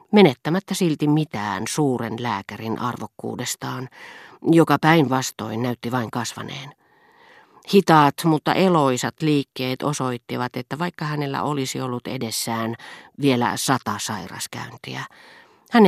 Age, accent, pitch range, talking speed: 40-59, native, 120-160 Hz, 100 wpm